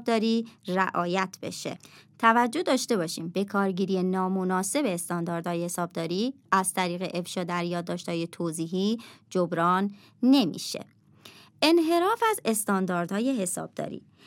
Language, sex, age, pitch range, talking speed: Persian, male, 30-49, 180-265 Hz, 95 wpm